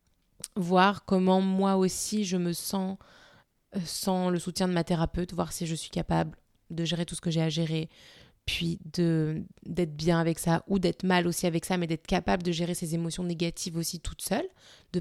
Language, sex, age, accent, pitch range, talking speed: French, female, 20-39, French, 165-190 Hz, 200 wpm